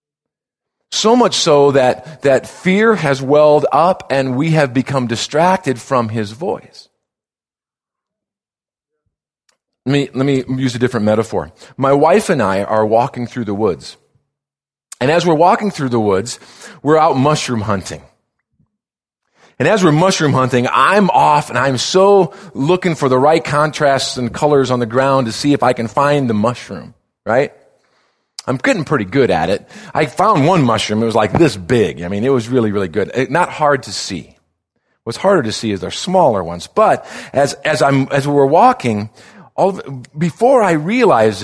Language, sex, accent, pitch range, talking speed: English, male, American, 115-155 Hz, 175 wpm